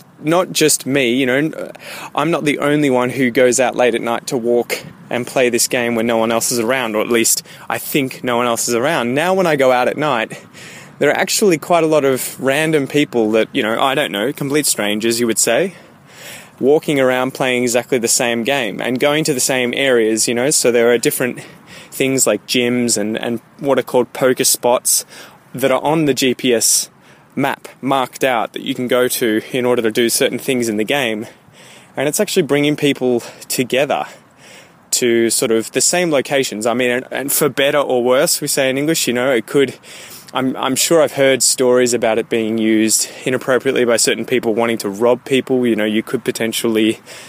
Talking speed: 210 wpm